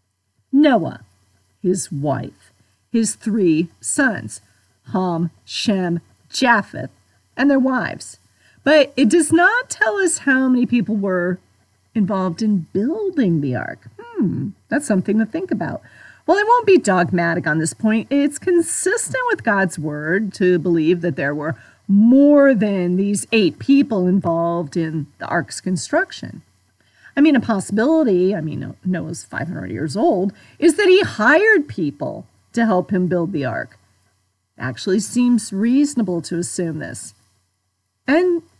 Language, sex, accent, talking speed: English, female, American, 140 wpm